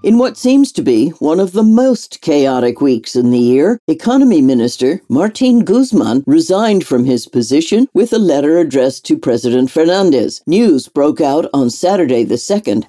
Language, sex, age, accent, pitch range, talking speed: English, female, 60-79, American, 135-215 Hz, 170 wpm